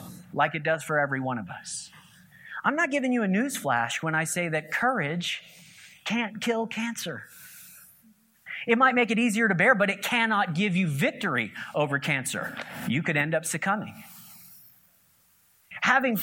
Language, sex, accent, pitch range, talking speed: English, male, American, 165-245 Hz, 160 wpm